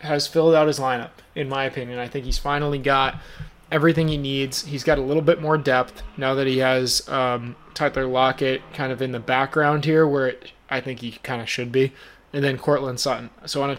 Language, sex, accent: English, male, American